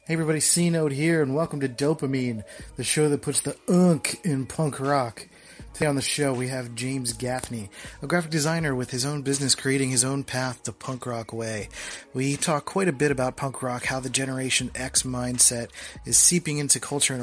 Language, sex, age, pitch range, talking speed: English, male, 30-49, 120-145 Hz, 200 wpm